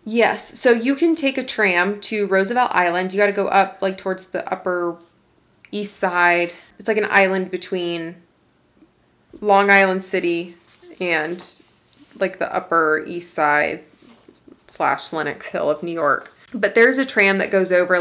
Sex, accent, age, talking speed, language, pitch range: female, American, 20-39, 160 wpm, English, 175-215 Hz